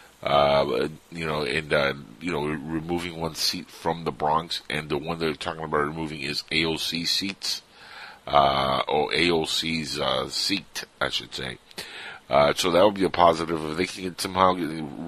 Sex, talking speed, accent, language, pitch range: male, 180 wpm, American, English, 75-90 Hz